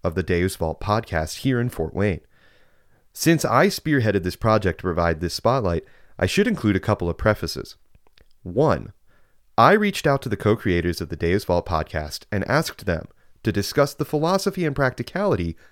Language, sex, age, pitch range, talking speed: English, male, 30-49, 85-115 Hz, 175 wpm